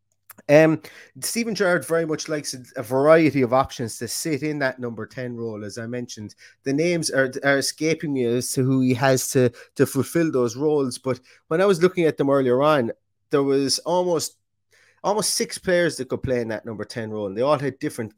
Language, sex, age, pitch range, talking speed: English, male, 30-49, 120-150 Hz, 220 wpm